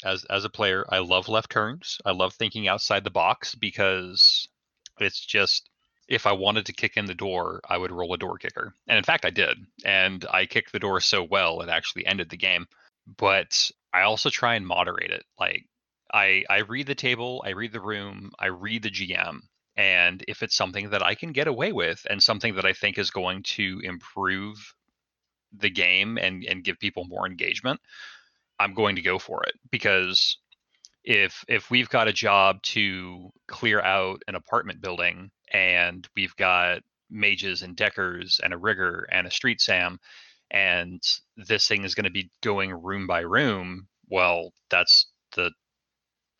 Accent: American